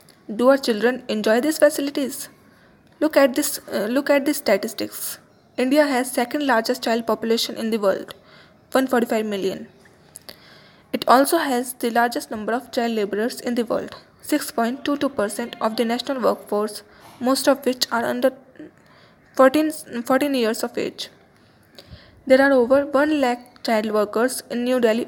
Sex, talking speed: female, 150 wpm